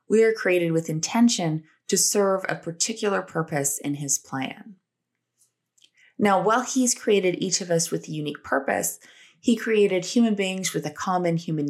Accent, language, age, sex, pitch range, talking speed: American, English, 20-39, female, 150-205 Hz, 165 wpm